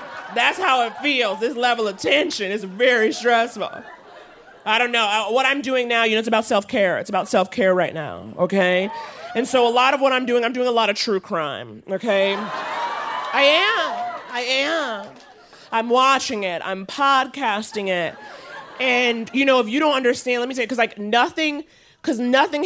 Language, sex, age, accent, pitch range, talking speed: English, male, 30-49, American, 215-315 Hz, 185 wpm